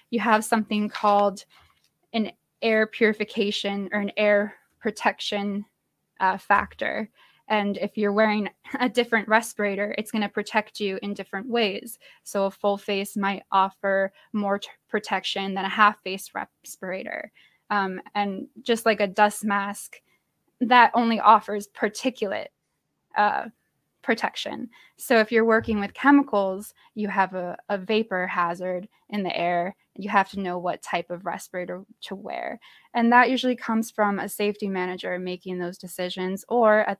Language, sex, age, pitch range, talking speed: English, female, 10-29, 190-220 Hz, 150 wpm